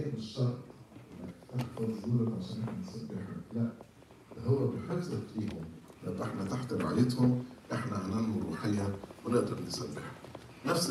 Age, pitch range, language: 50-69, 100-130 Hz, English